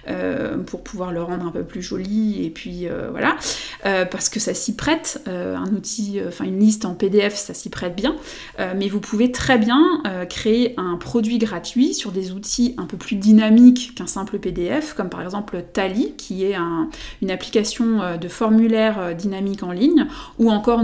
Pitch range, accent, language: 195-240 Hz, French, French